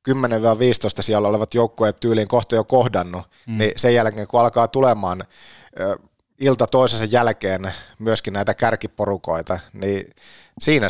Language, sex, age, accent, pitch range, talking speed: Finnish, male, 30-49, native, 100-120 Hz, 115 wpm